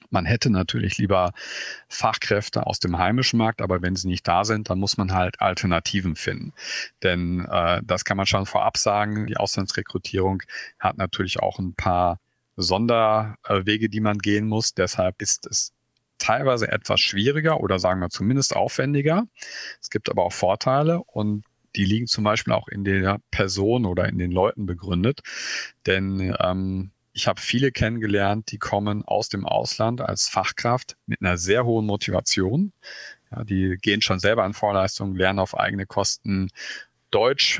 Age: 40-59